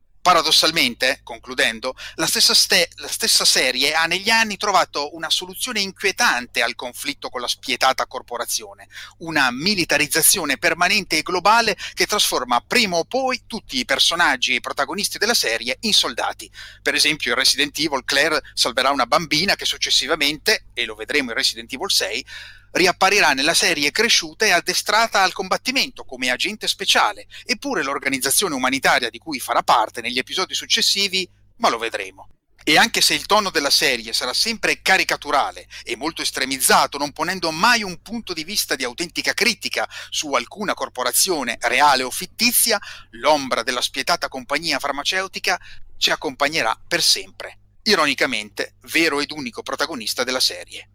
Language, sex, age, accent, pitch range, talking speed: Italian, male, 30-49, native, 140-205 Hz, 150 wpm